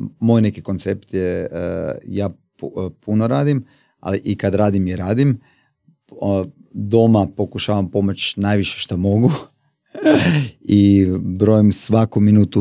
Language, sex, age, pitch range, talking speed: Croatian, male, 30-49, 95-115 Hz, 110 wpm